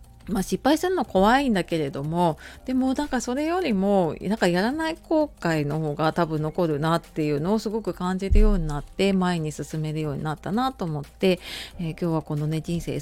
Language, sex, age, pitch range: Japanese, female, 30-49, 160-225 Hz